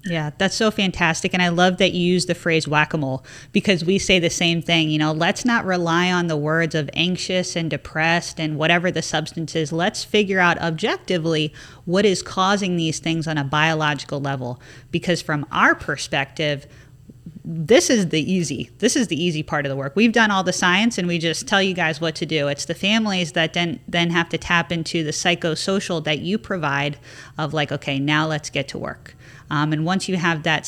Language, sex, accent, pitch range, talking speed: English, female, American, 150-180 Hz, 210 wpm